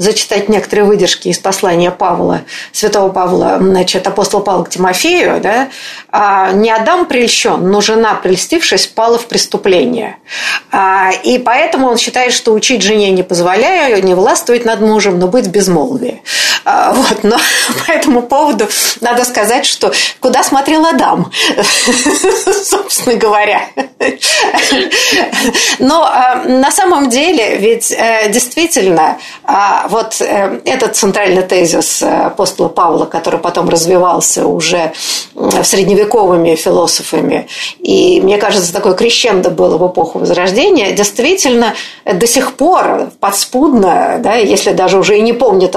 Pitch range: 190-260 Hz